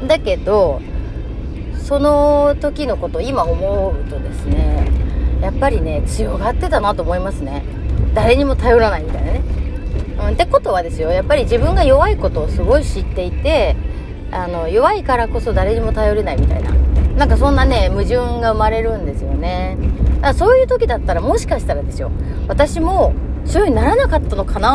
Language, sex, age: Japanese, female, 30-49